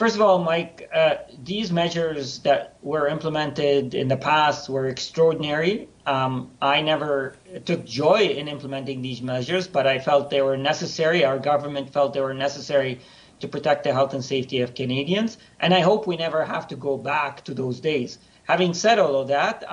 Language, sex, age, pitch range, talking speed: English, male, 40-59, 140-180 Hz, 185 wpm